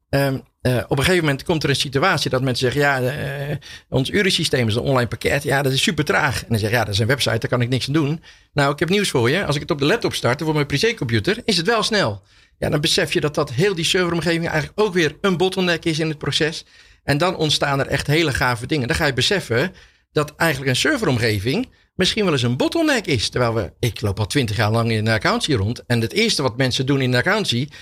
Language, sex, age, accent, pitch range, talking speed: Dutch, male, 40-59, Dutch, 120-165 Hz, 265 wpm